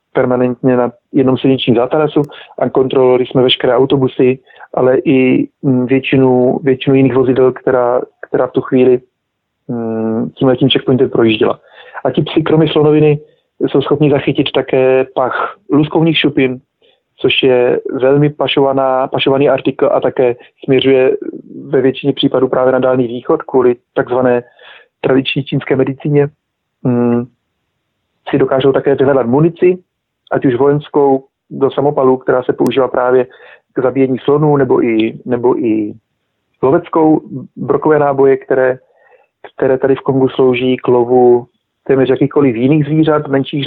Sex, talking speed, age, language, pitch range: male, 130 wpm, 40-59, Slovak, 125-145 Hz